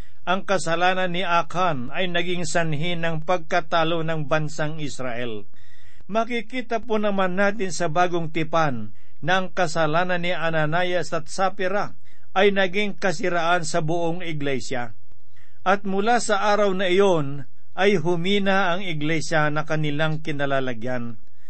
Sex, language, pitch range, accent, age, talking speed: male, Filipino, 145-185 Hz, native, 50-69, 125 wpm